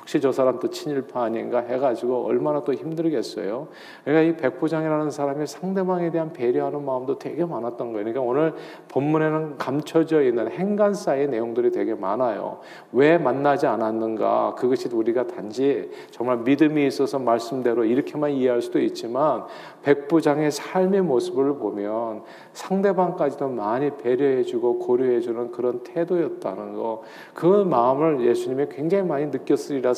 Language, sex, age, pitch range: Korean, male, 40-59, 140-190 Hz